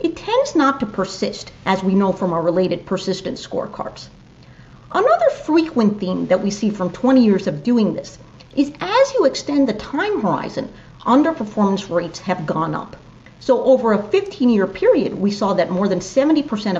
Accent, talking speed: American, 170 wpm